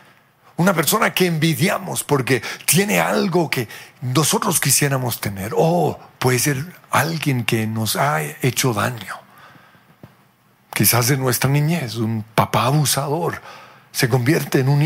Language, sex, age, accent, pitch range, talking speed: Spanish, male, 50-69, Mexican, 130-170 Hz, 125 wpm